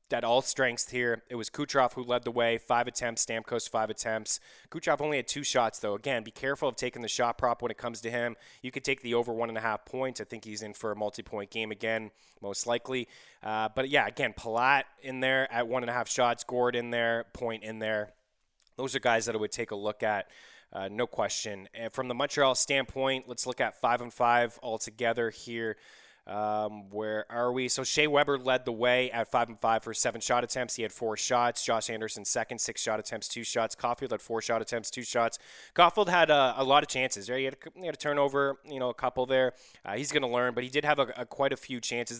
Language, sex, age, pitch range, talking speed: English, male, 20-39, 110-130 Hz, 230 wpm